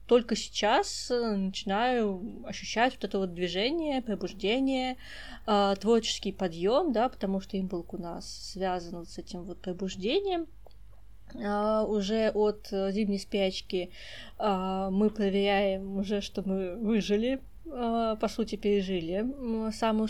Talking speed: 105 wpm